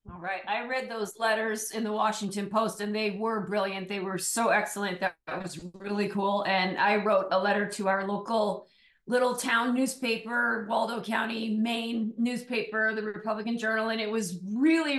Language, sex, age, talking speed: English, female, 40-59, 175 wpm